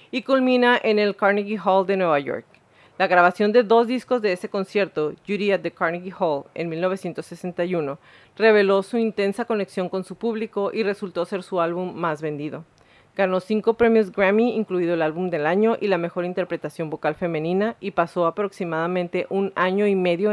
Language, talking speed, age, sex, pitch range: Spanish, 175 wpm, 40-59, female, 170-210 Hz